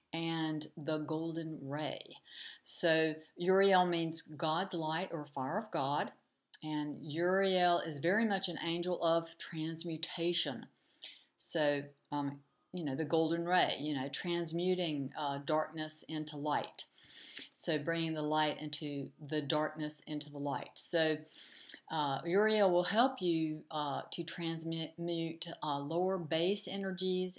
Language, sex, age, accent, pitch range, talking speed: English, female, 60-79, American, 155-180 Hz, 130 wpm